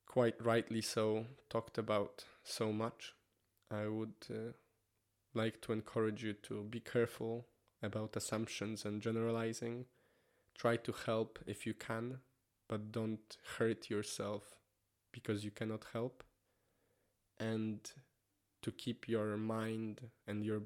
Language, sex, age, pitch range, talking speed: English, male, 20-39, 105-115 Hz, 120 wpm